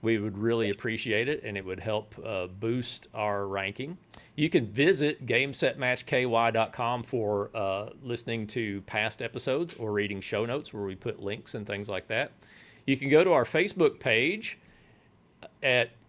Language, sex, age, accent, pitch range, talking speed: English, male, 40-59, American, 105-135 Hz, 160 wpm